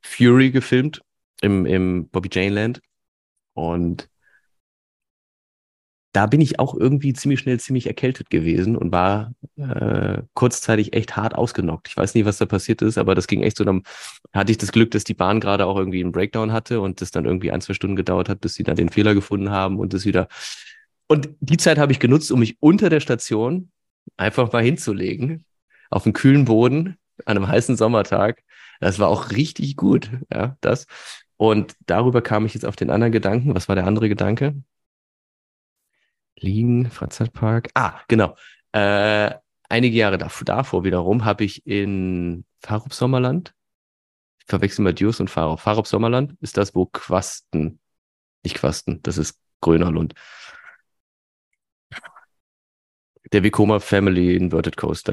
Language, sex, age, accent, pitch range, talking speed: German, male, 30-49, German, 95-120 Hz, 160 wpm